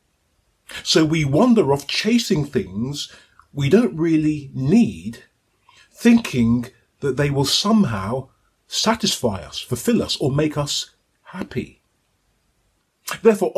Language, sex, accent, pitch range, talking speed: English, male, British, 120-170 Hz, 105 wpm